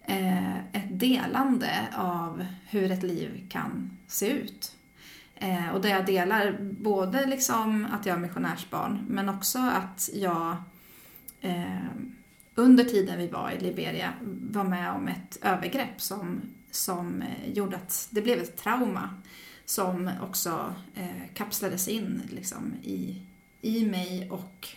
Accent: native